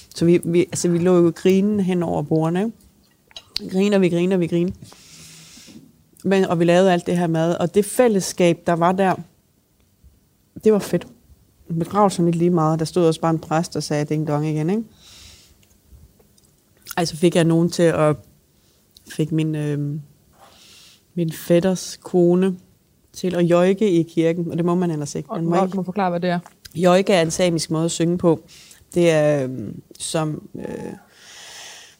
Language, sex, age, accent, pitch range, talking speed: Danish, female, 30-49, native, 160-180 Hz, 175 wpm